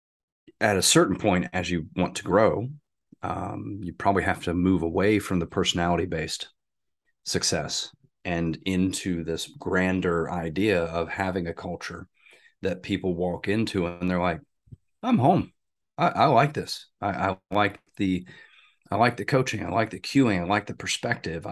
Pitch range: 85-100 Hz